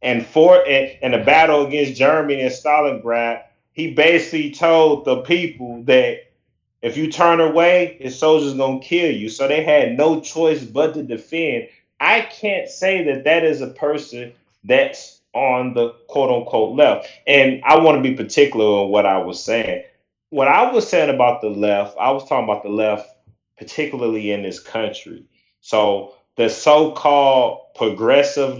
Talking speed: 165 wpm